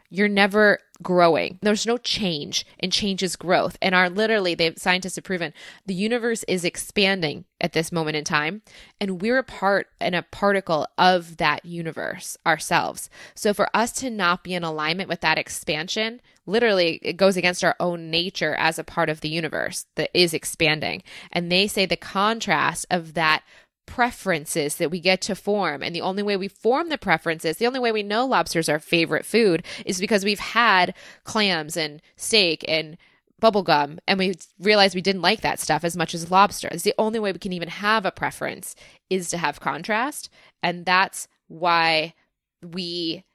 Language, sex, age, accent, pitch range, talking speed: English, female, 20-39, American, 165-205 Hz, 185 wpm